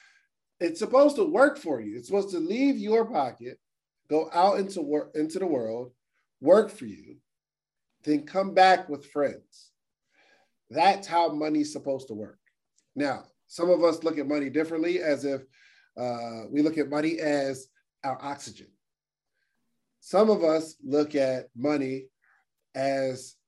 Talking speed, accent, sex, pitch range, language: 150 wpm, American, male, 135-185 Hz, English